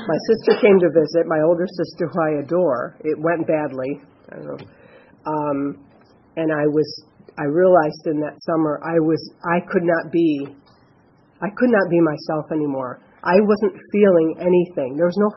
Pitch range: 155-180 Hz